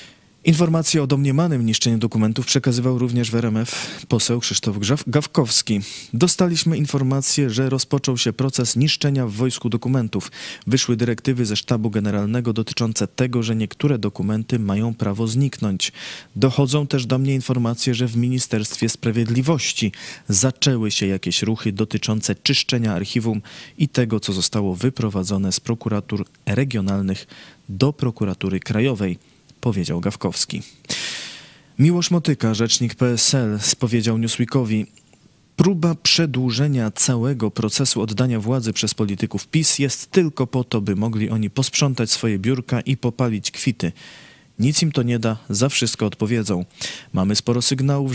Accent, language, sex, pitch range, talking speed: native, Polish, male, 110-135 Hz, 125 wpm